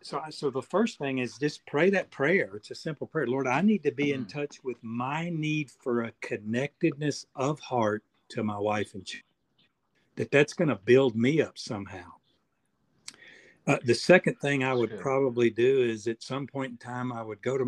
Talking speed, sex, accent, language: 205 wpm, male, American, English